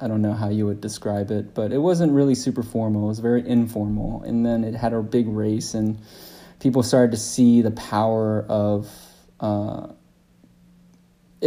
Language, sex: English, male